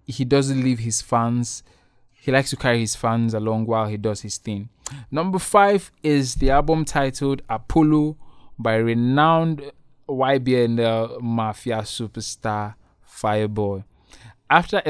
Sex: male